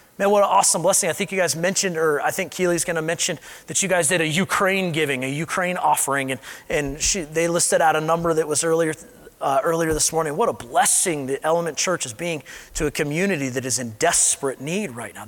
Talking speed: 235 wpm